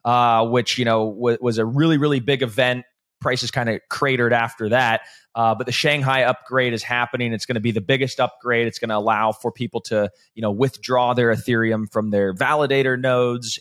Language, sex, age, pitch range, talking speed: English, male, 20-39, 120-155 Hz, 205 wpm